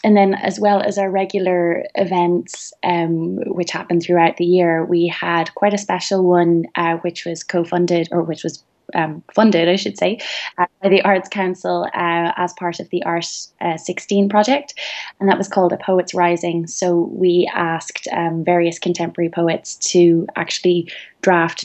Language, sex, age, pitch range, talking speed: English, female, 20-39, 170-195 Hz, 170 wpm